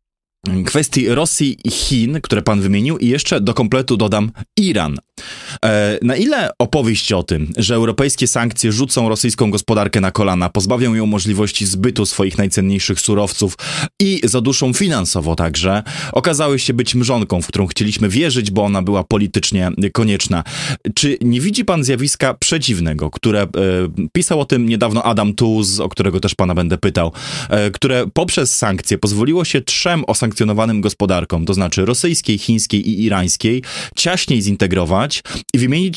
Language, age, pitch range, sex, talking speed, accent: Polish, 20-39, 105-135 Hz, male, 150 wpm, native